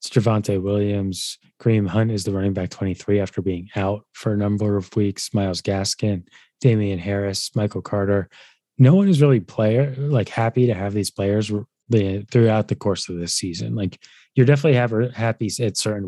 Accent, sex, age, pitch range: American, male, 20-39, 100-115 Hz